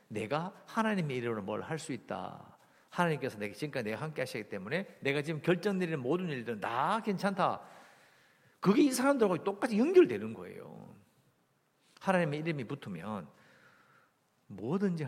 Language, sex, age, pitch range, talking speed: English, male, 50-69, 105-165 Hz, 120 wpm